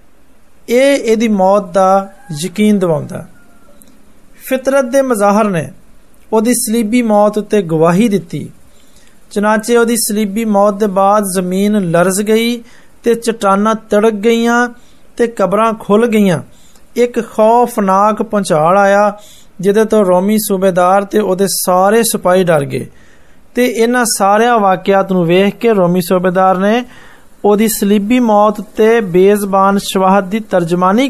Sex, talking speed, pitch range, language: male, 85 wpm, 190-230 Hz, Hindi